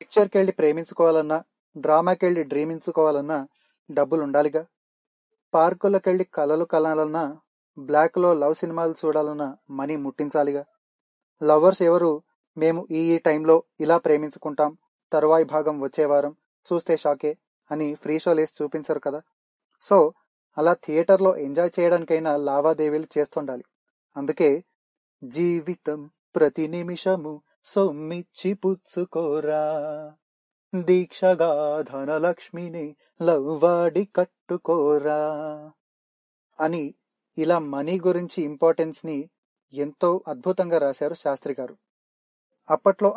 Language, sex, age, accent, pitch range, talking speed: Telugu, male, 30-49, native, 150-175 Hz, 85 wpm